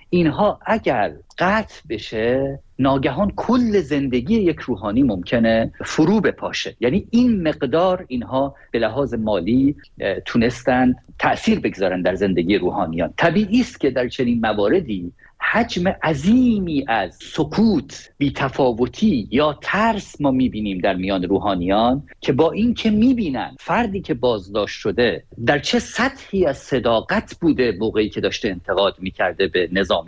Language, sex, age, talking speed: Persian, male, 50-69, 130 wpm